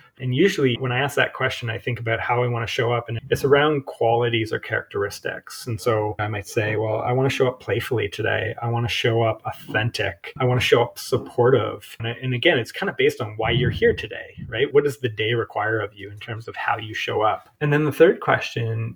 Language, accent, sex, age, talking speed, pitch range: English, American, male, 30-49, 250 wpm, 110-135 Hz